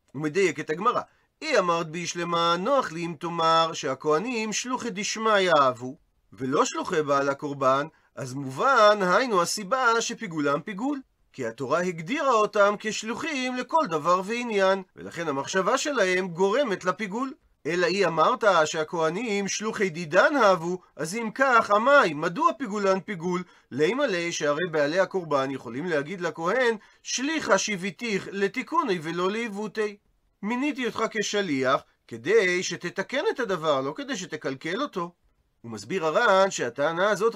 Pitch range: 165-220 Hz